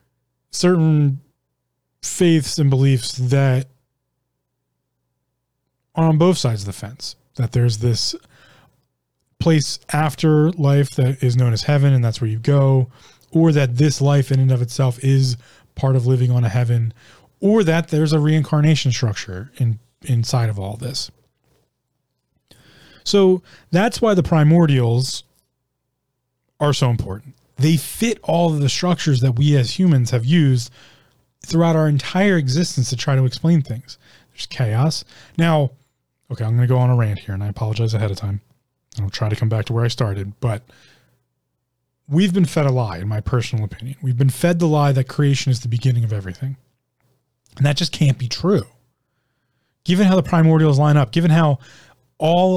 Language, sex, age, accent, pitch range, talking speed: English, male, 30-49, American, 125-150 Hz, 170 wpm